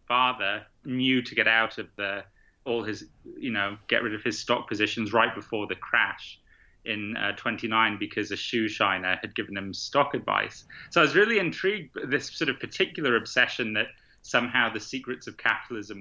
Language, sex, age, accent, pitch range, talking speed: English, male, 30-49, British, 105-125 Hz, 185 wpm